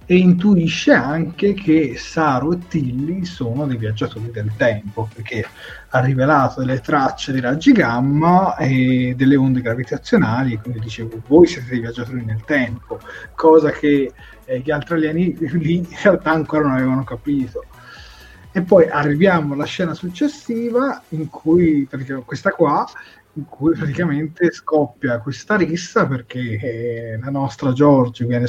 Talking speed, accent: 145 wpm, native